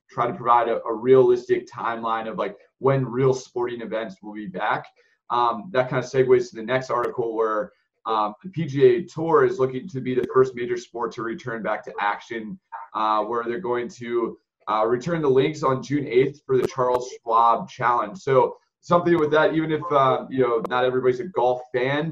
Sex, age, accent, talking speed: male, 20-39, American, 200 wpm